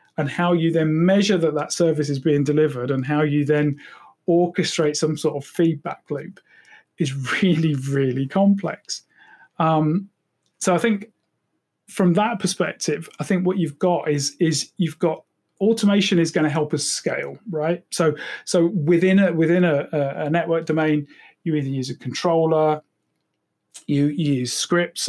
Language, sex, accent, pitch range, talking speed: English, male, British, 145-175 Hz, 160 wpm